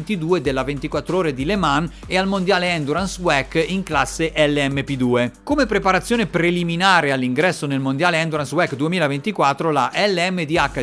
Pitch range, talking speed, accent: 145-200 Hz, 140 wpm, native